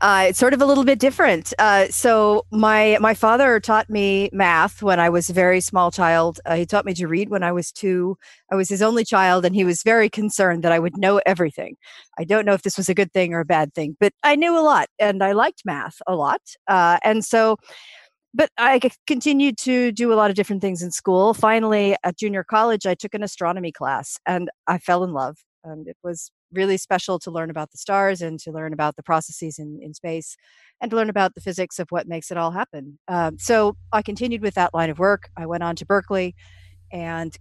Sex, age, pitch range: female, 40-59, 165-215 Hz